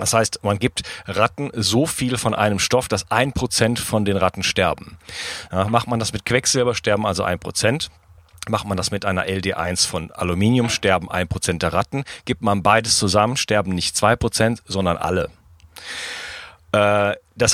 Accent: German